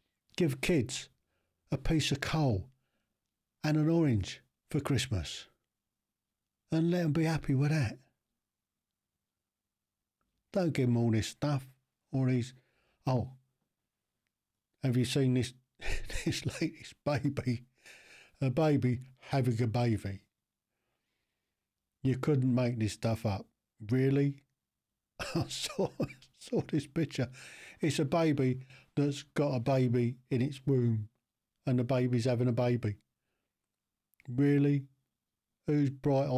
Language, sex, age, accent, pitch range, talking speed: English, male, 60-79, British, 120-145 Hz, 115 wpm